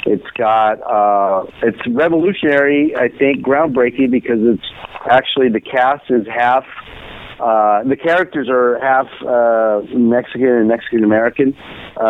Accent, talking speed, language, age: American, 125 wpm, English, 50-69